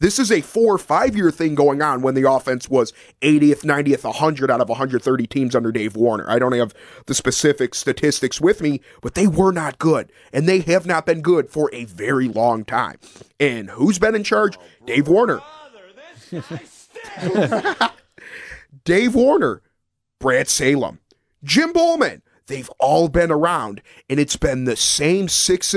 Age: 30-49